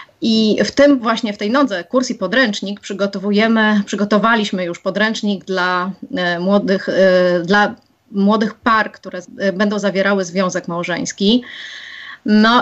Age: 30-49